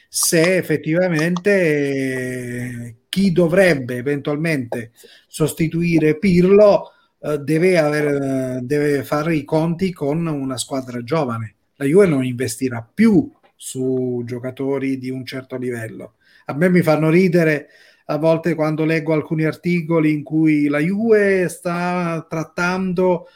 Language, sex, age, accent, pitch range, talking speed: Italian, male, 30-49, native, 135-175 Hz, 120 wpm